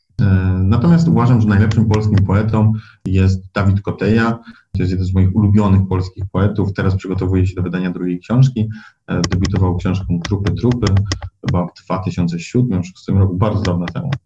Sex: male